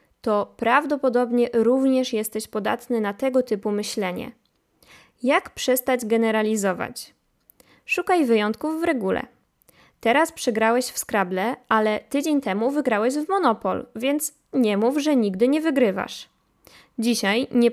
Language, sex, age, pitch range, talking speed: Polish, female, 20-39, 215-265 Hz, 120 wpm